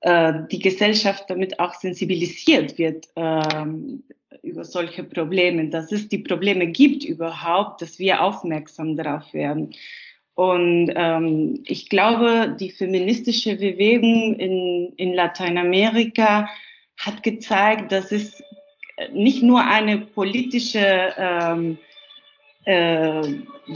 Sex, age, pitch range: female, 30-49, 175-225 Hz